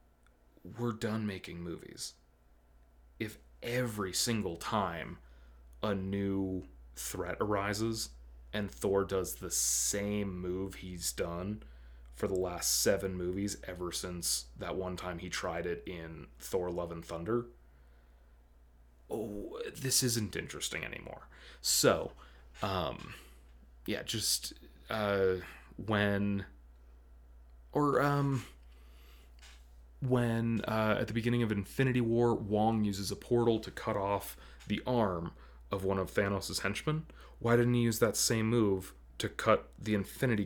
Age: 30-49